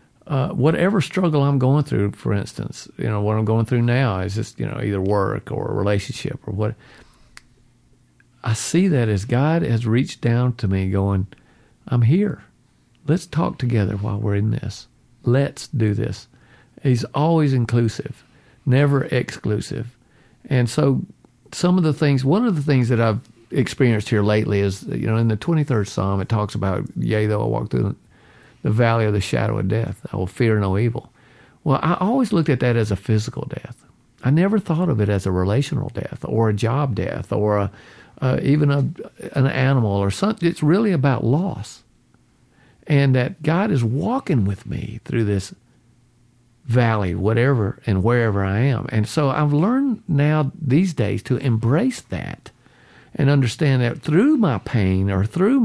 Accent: American